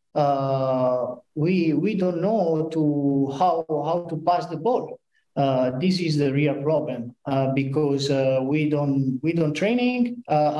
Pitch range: 135-165 Hz